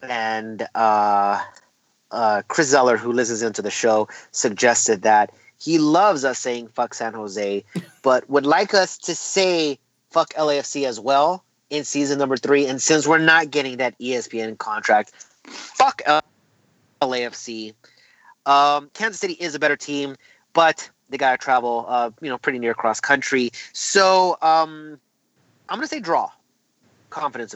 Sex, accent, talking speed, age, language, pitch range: male, American, 150 wpm, 30-49, English, 115-150 Hz